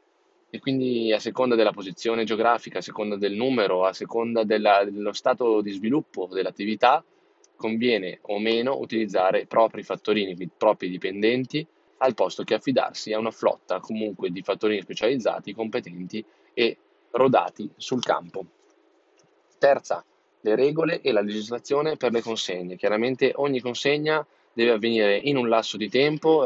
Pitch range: 105-125 Hz